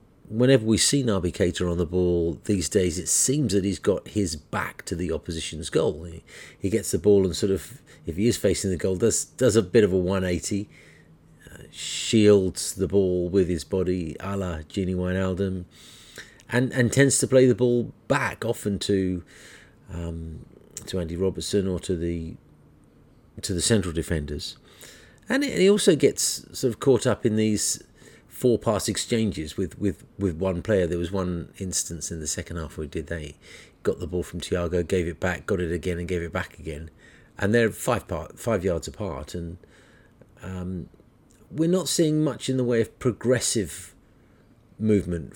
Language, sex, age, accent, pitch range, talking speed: English, male, 40-59, British, 85-110 Hz, 180 wpm